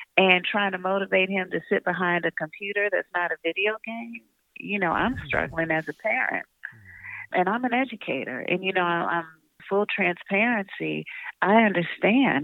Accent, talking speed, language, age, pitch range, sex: American, 165 wpm, English, 40-59, 155-195 Hz, female